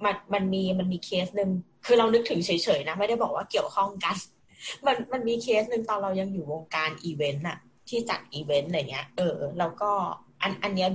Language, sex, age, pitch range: Thai, female, 20-39, 155-200 Hz